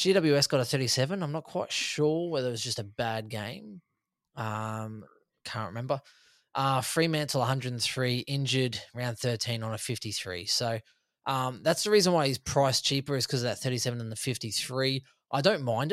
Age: 20-39